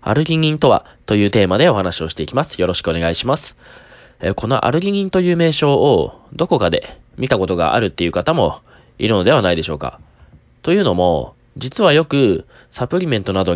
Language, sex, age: Japanese, male, 20-39